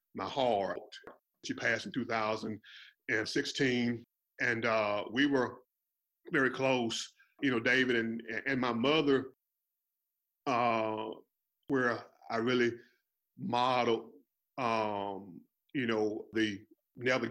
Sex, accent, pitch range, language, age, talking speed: male, American, 110-125 Hz, English, 40-59, 100 wpm